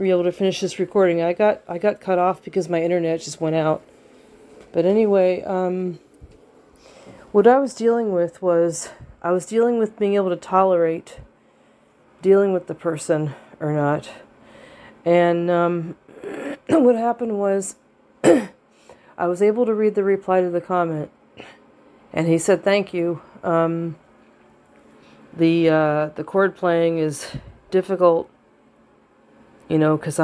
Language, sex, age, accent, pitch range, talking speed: English, female, 40-59, American, 165-205 Hz, 140 wpm